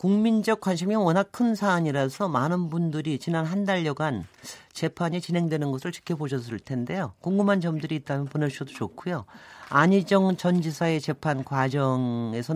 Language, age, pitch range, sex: Korean, 40-59, 140-200 Hz, male